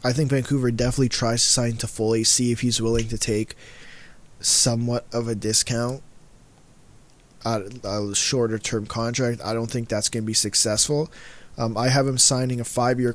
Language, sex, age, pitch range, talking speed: English, male, 20-39, 115-130 Hz, 180 wpm